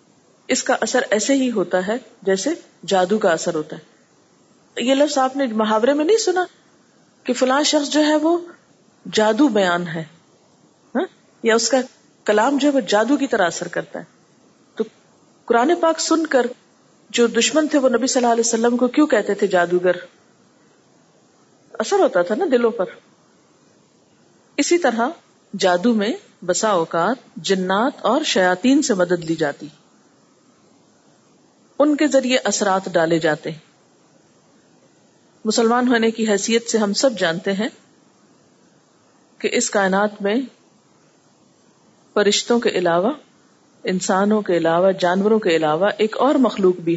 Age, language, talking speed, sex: 40-59, Urdu, 145 wpm, female